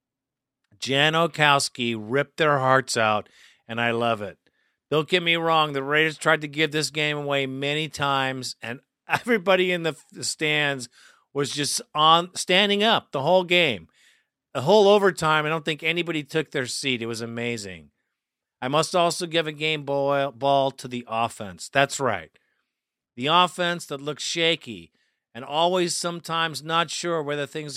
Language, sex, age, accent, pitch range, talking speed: English, male, 50-69, American, 135-175 Hz, 160 wpm